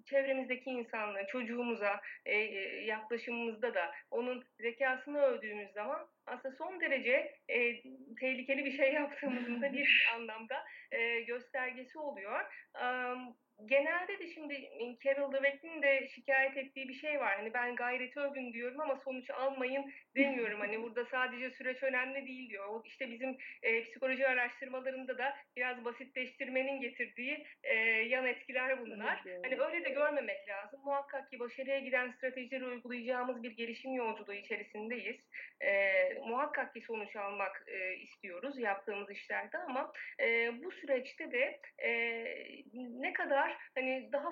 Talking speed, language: 120 wpm, Turkish